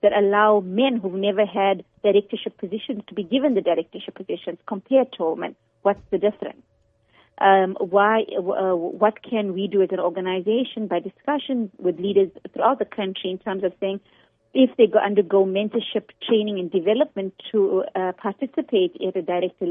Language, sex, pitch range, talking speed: English, female, 190-220 Hz, 165 wpm